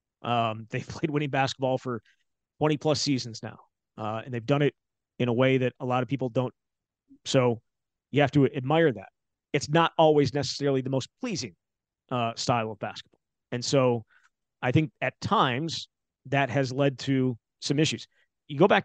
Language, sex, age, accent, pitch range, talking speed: English, male, 30-49, American, 125-145 Hz, 180 wpm